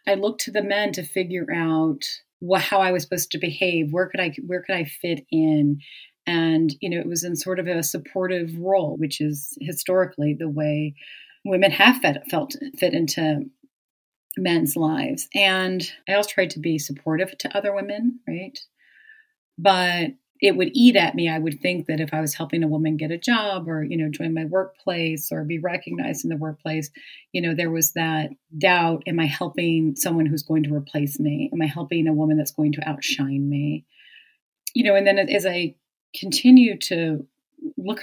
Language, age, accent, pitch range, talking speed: English, 30-49, American, 155-190 Hz, 190 wpm